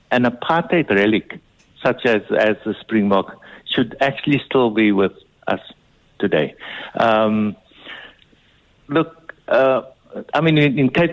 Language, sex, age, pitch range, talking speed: English, male, 60-79, 115-155 Hz, 125 wpm